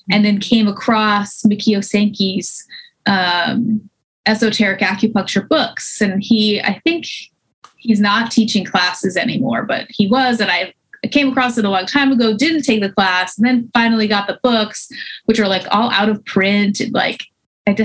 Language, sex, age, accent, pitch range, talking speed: English, female, 20-39, American, 200-245 Hz, 170 wpm